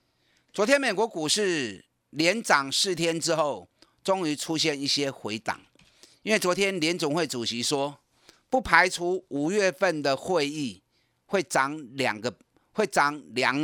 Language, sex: Chinese, male